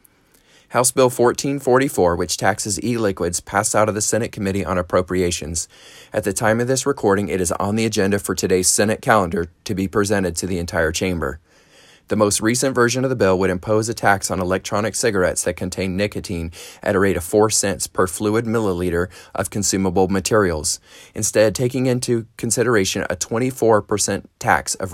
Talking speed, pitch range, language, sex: 175 wpm, 90-110 Hz, English, male